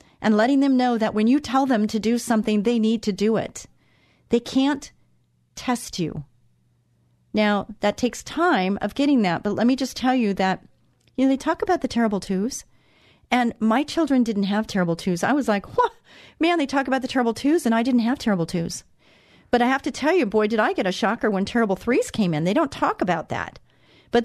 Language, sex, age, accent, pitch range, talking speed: English, female, 40-59, American, 185-250 Hz, 220 wpm